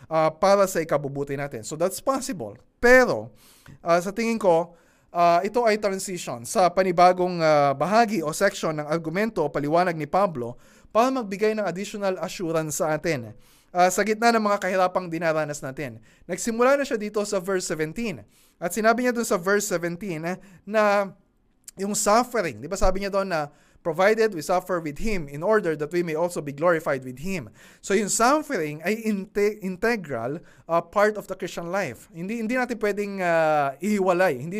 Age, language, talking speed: 20-39, Filipino, 175 wpm